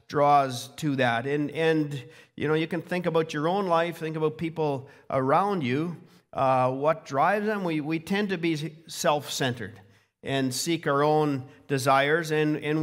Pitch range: 130-155 Hz